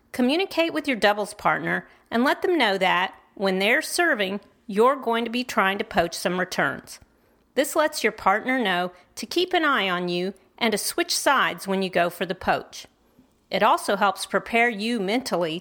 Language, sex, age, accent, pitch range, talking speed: English, female, 40-59, American, 195-275 Hz, 190 wpm